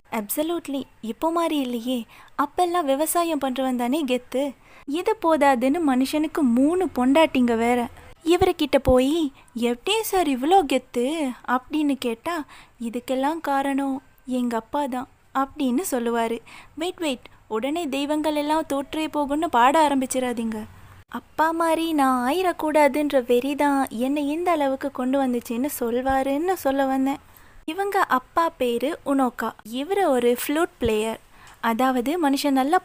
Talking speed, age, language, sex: 115 wpm, 20-39, Tamil, female